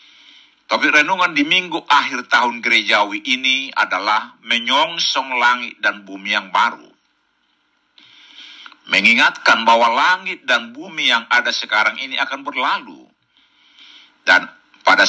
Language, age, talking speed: Indonesian, 60-79, 110 wpm